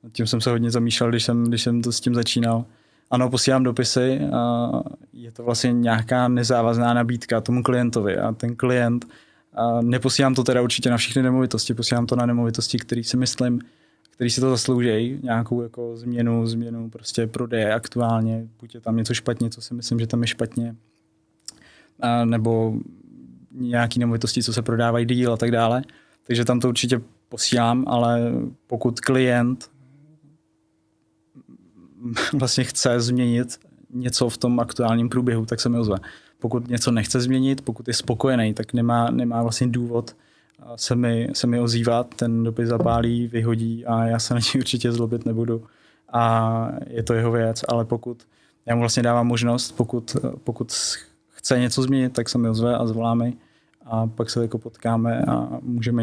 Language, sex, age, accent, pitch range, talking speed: Czech, male, 20-39, native, 115-125 Hz, 165 wpm